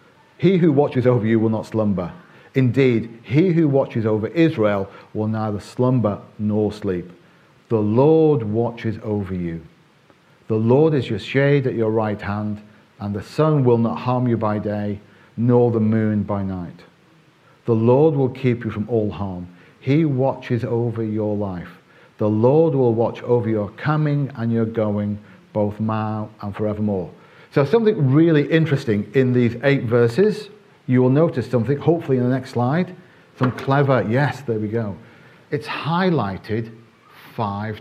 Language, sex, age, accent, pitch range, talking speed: English, male, 40-59, British, 105-140 Hz, 160 wpm